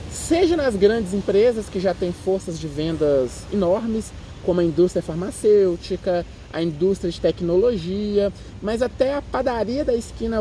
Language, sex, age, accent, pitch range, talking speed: Portuguese, male, 20-39, Brazilian, 170-230 Hz, 145 wpm